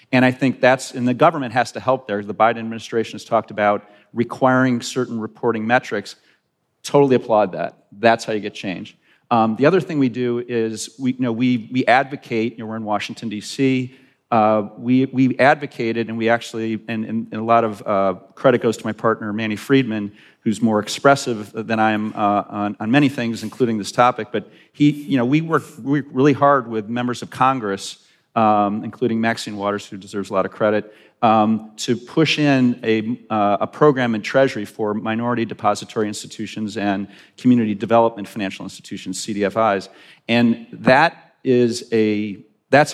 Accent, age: American, 40-59